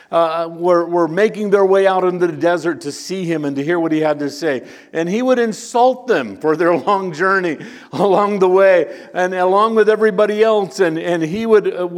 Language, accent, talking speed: English, American, 215 wpm